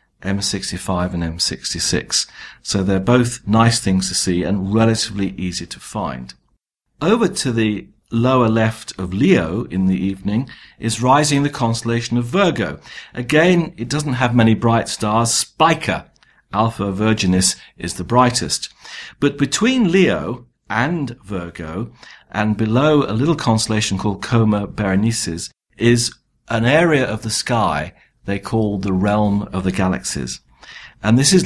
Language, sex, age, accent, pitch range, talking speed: English, male, 50-69, British, 95-120 Hz, 140 wpm